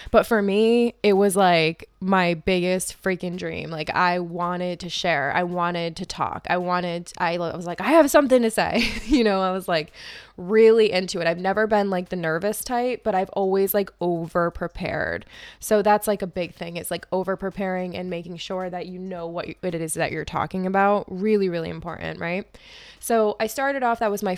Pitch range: 175-205 Hz